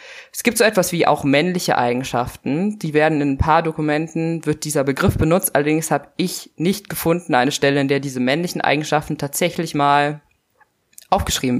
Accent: German